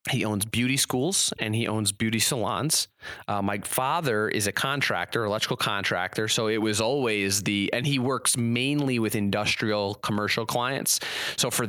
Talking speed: 165 wpm